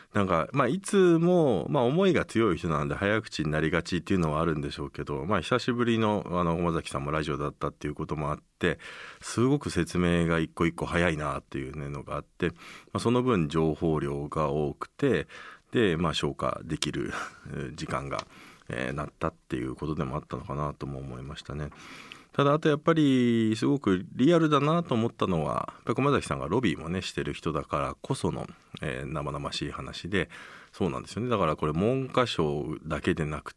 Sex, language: male, Japanese